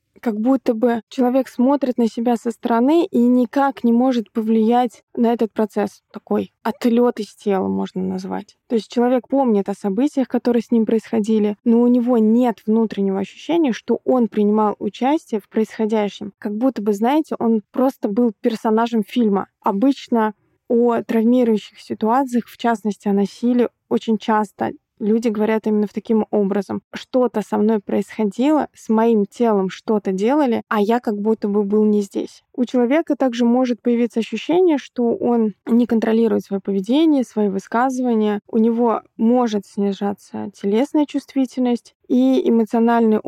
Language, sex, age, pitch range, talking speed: Russian, female, 20-39, 215-245 Hz, 150 wpm